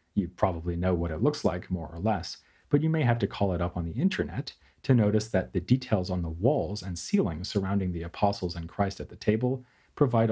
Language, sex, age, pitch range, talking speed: English, male, 40-59, 90-120 Hz, 235 wpm